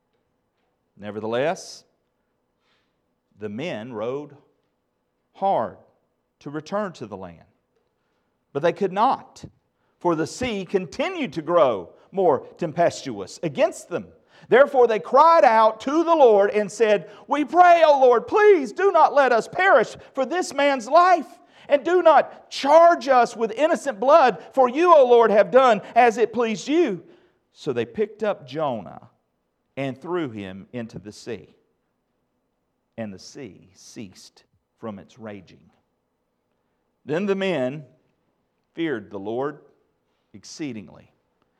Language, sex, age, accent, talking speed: English, male, 50-69, American, 130 wpm